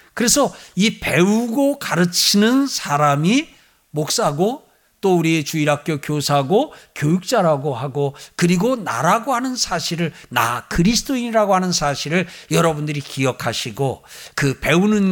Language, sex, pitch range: Korean, male, 130-210 Hz